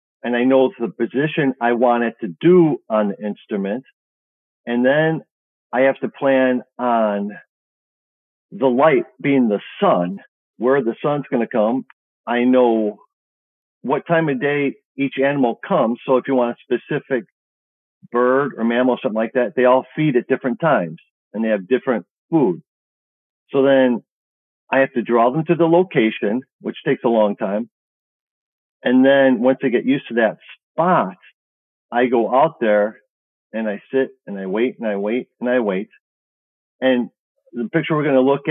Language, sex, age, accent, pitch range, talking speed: English, male, 50-69, American, 115-135 Hz, 175 wpm